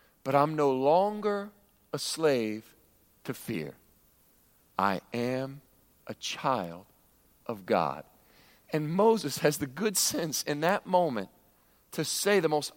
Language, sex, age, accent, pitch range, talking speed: English, male, 40-59, American, 120-195 Hz, 125 wpm